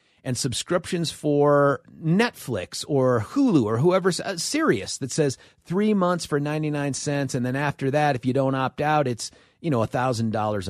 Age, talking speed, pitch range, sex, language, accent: 40-59, 170 wpm, 125-170 Hz, male, English, American